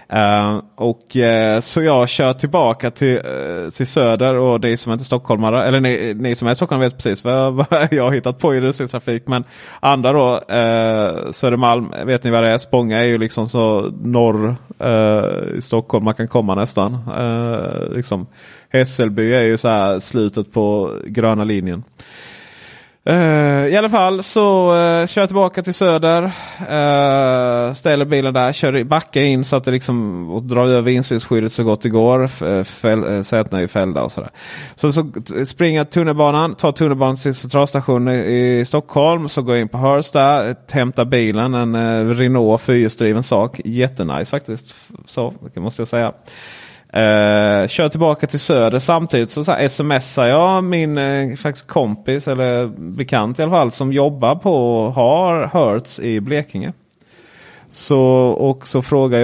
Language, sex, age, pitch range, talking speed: Swedish, male, 30-49, 110-140 Hz, 160 wpm